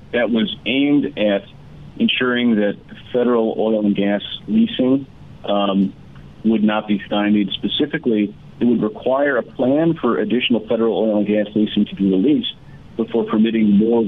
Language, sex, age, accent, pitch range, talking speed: English, male, 40-59, American, 100-120 Hz, 150 wpm